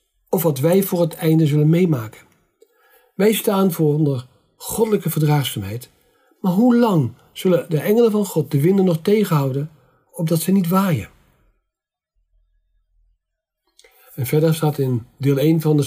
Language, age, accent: Dutch, 50-69, Dutch